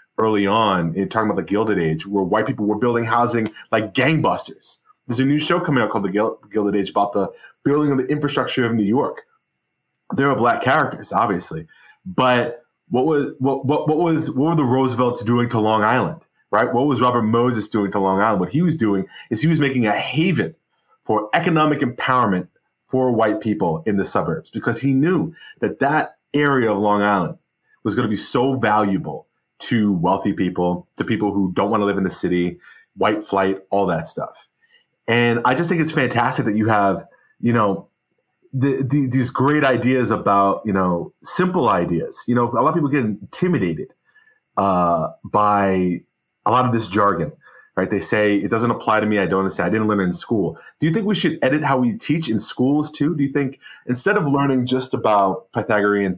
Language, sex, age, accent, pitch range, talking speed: English, male, 30-49, American, 100-140 Hz, 200 wpm